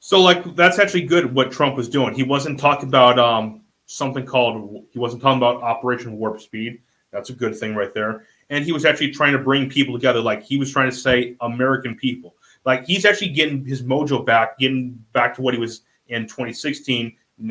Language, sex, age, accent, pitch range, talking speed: English, male, 30-49, American, 115-135 Hz, 210 wpm